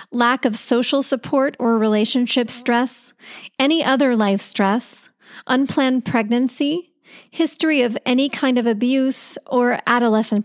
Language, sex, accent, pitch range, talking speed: English, female, American, 215-265 Hz, 120 wpm